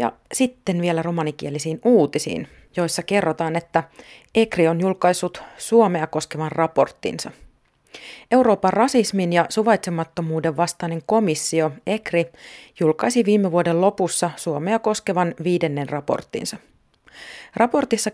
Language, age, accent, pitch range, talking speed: Finnish, 40-59, native, 155-200 Hz, 100 wpm